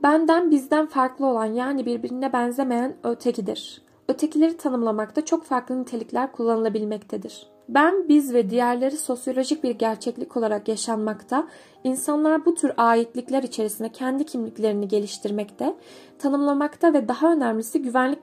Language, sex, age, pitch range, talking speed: Turkish, female, 10-29, 225-300 Hz, 120 wpm